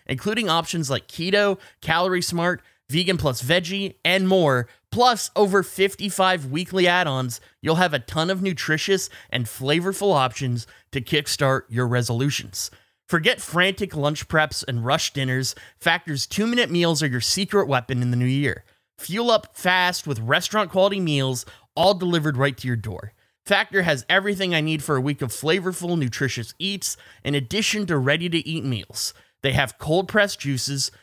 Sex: male